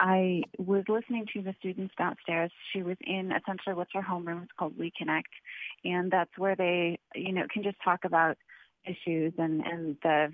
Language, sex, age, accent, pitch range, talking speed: English, female, 30-49, American, 170-205 Hz, 185 wpm